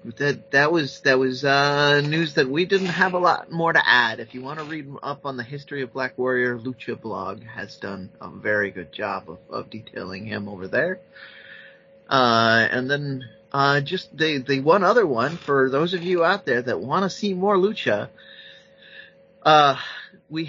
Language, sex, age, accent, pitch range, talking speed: English, male, 30-49, American, 120-160 Hz, 195 wpm